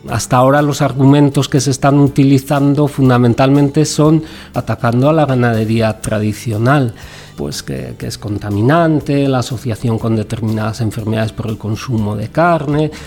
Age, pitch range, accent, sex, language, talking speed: 40-59, 115-140 Hz, Spanish, male, Spanish, 140 wpm